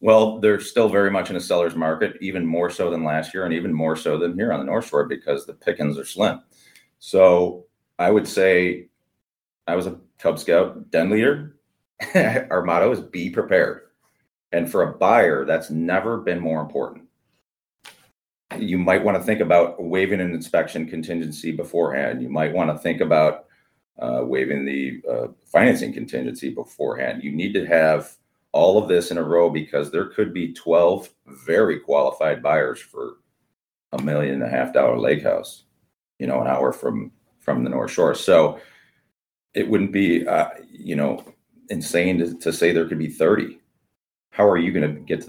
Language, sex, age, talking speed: English, male, 40-59, 180 wpm